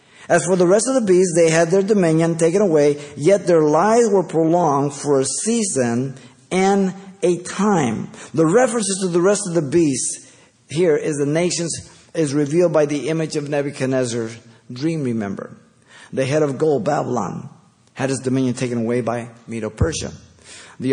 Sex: male